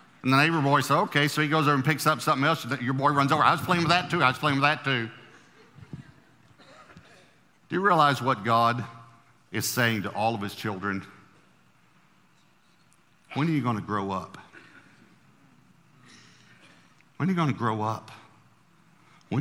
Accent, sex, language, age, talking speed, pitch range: American, male, English, 50-69, 180 wpm, 95-130 Hz